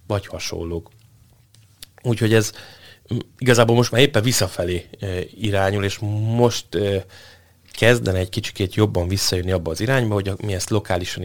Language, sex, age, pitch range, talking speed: Hungarian, male, 30-49, 95-115 Hz, 130 wpm